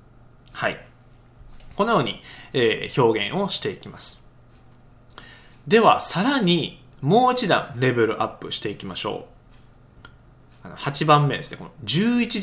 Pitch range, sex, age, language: 125-190 Hz, male, 20-39, Japanese